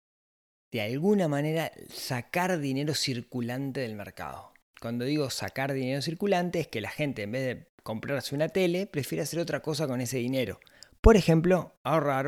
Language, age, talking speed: Spanish, 20-39, 160 wpm